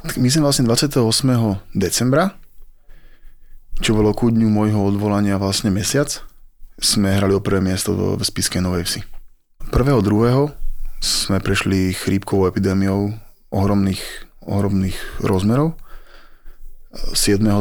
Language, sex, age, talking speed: Slovak, male, 20-39, 110 wpm